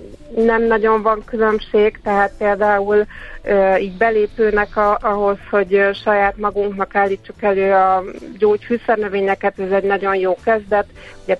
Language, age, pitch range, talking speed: Hungarian, 30-49, 195-210 Hz, 120 wpm